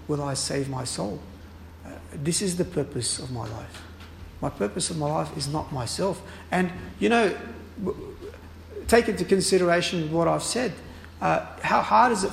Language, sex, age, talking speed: English, male, 50-69, 175 wpm